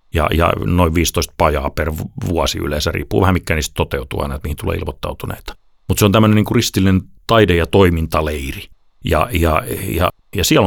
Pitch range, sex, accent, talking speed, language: 80-105 Hz, male, native, 170 wpm, Finnish